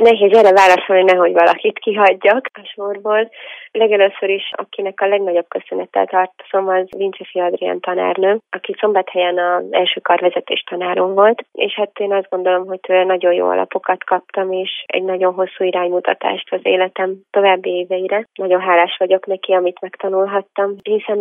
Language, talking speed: Hungarian, 145 wpm